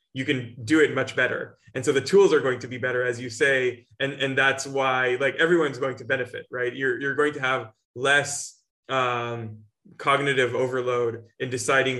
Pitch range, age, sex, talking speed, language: 125-145 Hz, 20-39, male, 195 wpm, English